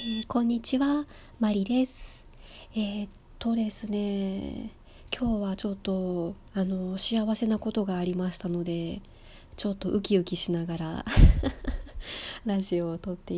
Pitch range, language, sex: 185-240 Hz, Japanese, female